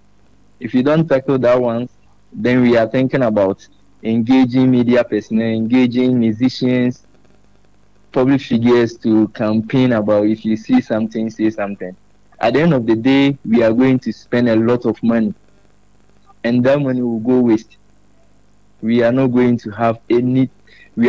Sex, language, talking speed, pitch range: male, English, 160 wpm, 110-130 Hz